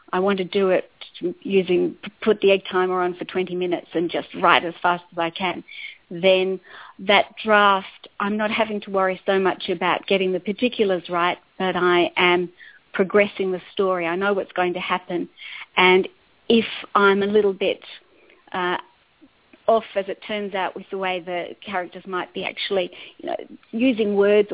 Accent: Australian